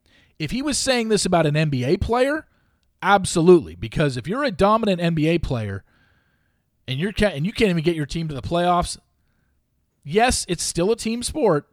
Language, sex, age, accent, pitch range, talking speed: English, male, 40-59, American, 115-190 Hz, 185 wpm